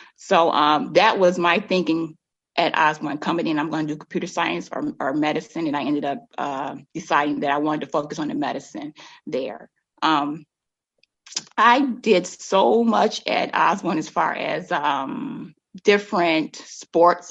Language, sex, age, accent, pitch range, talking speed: English, female, 30-49, American, 165-210 Hz, 165 wpm